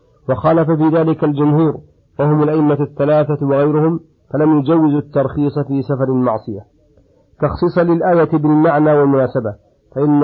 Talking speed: 110 wpm